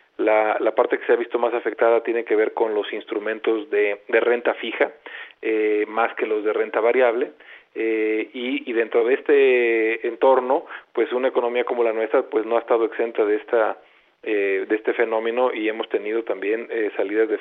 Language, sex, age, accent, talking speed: Spanish, male, 40-59, Mexican, 195 wpm